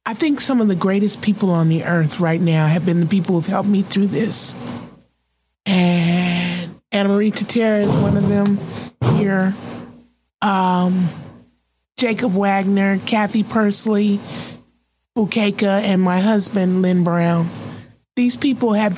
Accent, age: American, 30-49